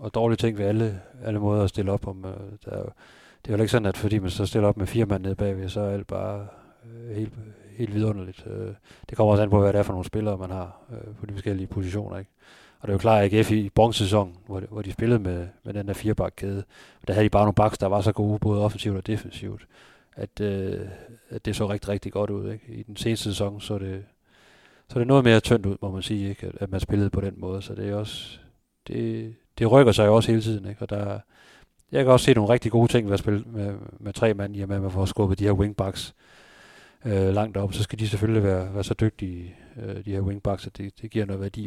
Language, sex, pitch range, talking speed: Danish, male, 100-110 Hz, 265 wpm